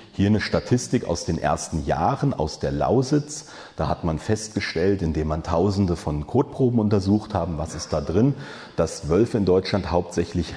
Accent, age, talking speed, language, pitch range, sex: German, 40-59, 170 wpm, German, 80-110 Hz, male